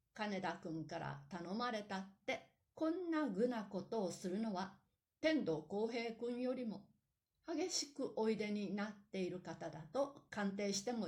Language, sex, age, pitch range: Japanese, female, 60-79, 190-265 Hz